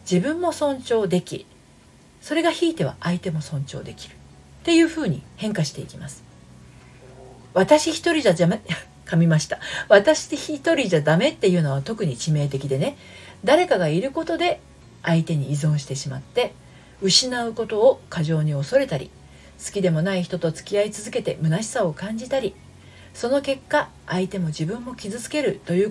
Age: 40-59